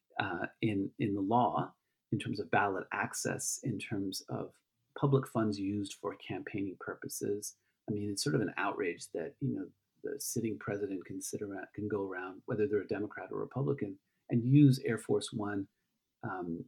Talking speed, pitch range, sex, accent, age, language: 180 wpm, 105-135 Hz, male, American, 40-59, English